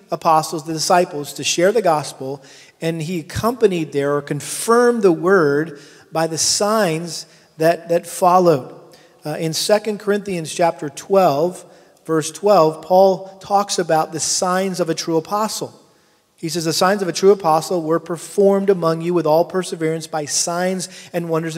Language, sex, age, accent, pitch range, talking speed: English, male, 40-59, American, 160-195 Hz, 160 wpm